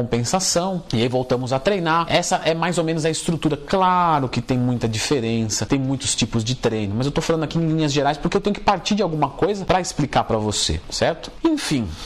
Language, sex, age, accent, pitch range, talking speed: Portuguese, male, 40-59, Brazilian, 120-200 Hz, 225 wpm